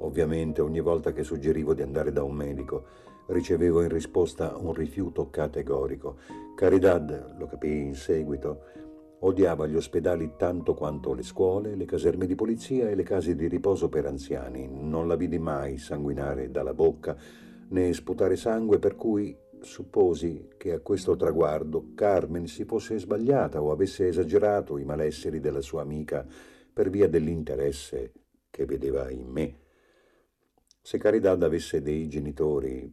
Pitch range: 70-95 Hz